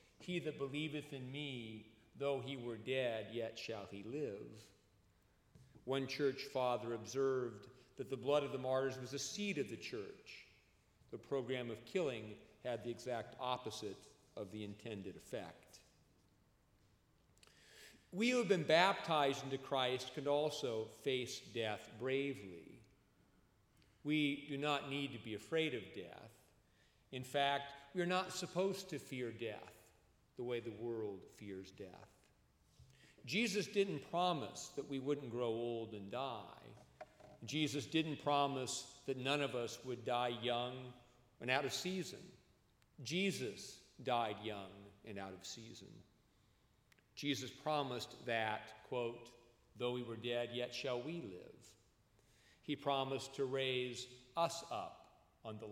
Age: 40-59